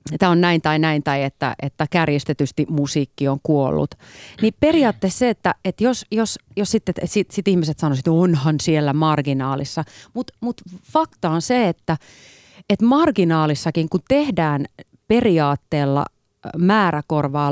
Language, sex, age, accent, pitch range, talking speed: Finnish, female, 30-49, native, 145-215 Hz, 145 wpm